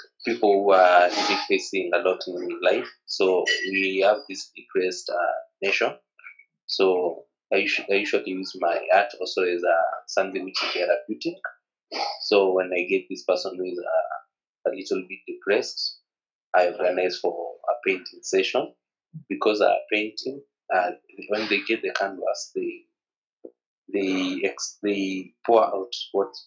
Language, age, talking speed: English, 30-49, 145 wpm